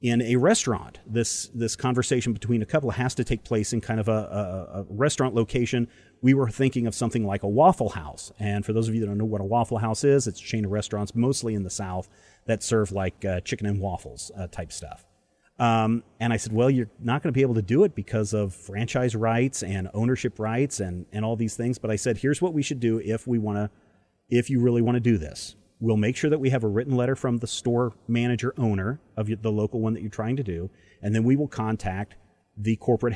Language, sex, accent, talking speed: English, male, American, 250 wpm